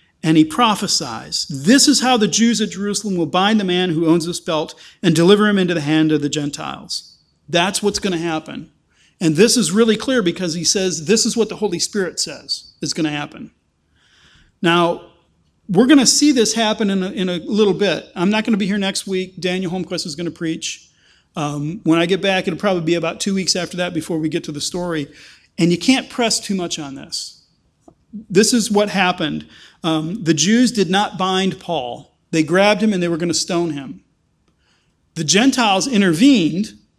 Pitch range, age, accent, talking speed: 170-220 Hz, 40-59, American, 205 wpm